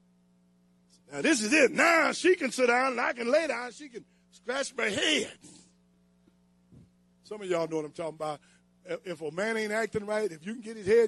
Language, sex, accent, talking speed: English, male, American, 215 wpm